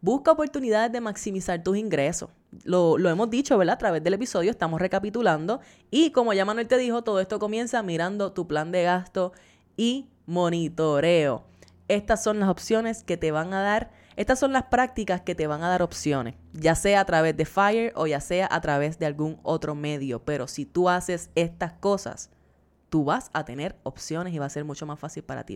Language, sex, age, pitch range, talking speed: Spanish, female, 20-39, 155-205 Hz, 205 wpm